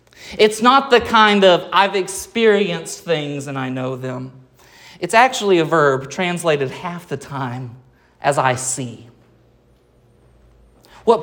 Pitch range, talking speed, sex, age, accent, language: 130-200 Hz, 130 wpm, male, 30-49, American, English